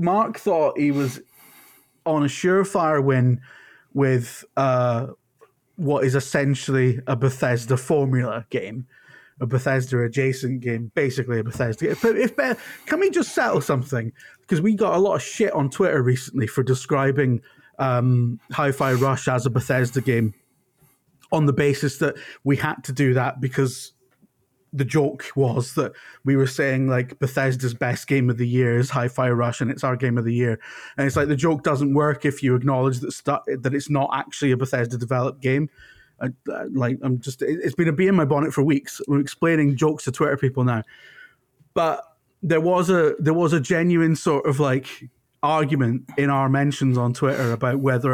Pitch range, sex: 125-145 Hz, male